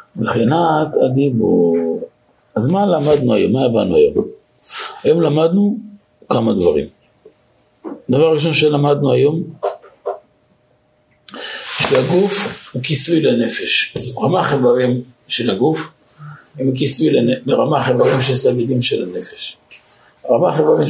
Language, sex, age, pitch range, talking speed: Hebrew, male, 50-69, 125-170 Hz, 60 wpm